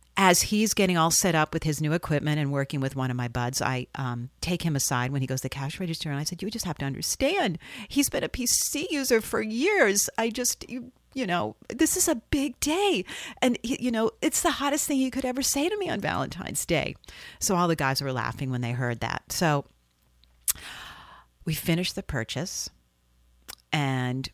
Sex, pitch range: female, 125-200 Hz